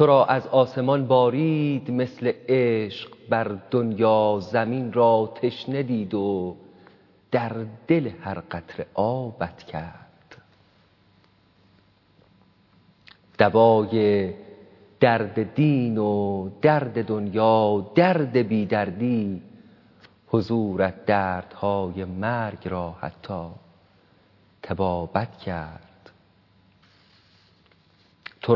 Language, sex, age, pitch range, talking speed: Persian, male, 40-59, 95-115 Hz, 80 wpm